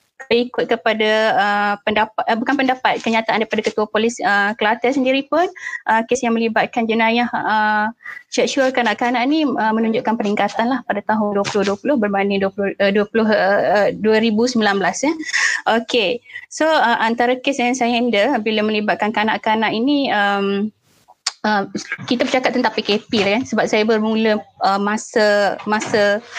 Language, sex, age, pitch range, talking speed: Malay, female, 20-39, 210-245 Hz, 150 wpm